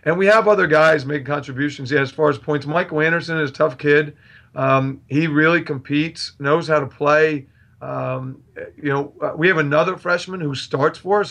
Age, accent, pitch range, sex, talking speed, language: 40-59, American, 140-170 Hz, male, 195 wpm, English